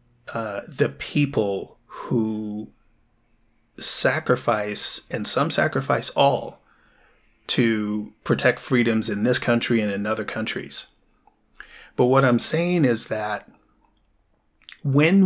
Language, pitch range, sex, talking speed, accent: English, 110-140 Hz, male, 100 wpm, American